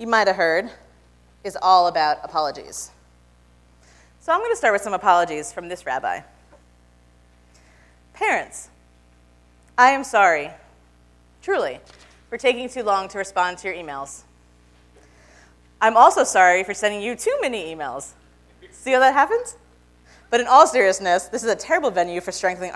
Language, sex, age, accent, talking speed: English, female, 30-49, American, 150 wpm